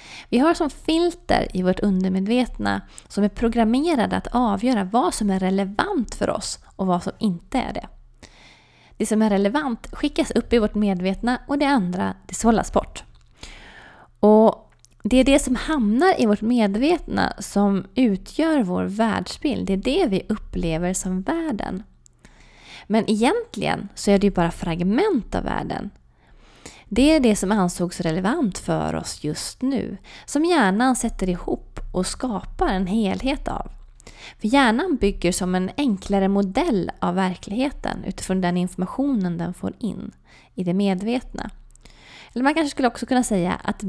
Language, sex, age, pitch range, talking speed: Swedish, female, 20-39, 185-255 Hz, 155 wpm